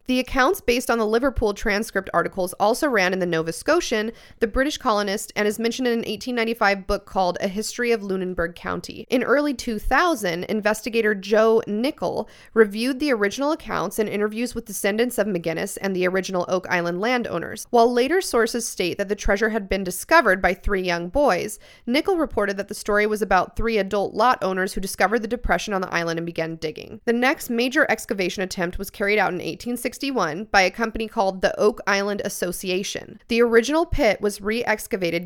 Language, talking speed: English, 185 wpm